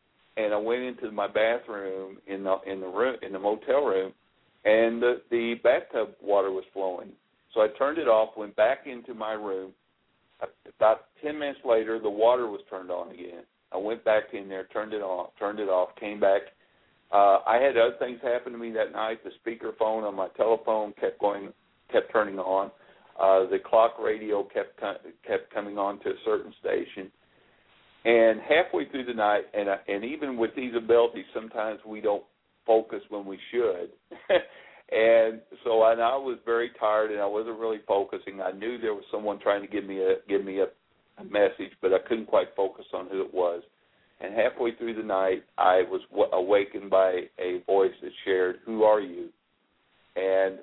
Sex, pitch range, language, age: male, 95-125 Hz, English, 50-69